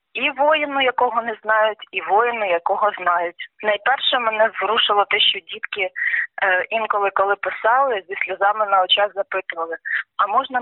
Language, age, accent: Russian, 20-39, native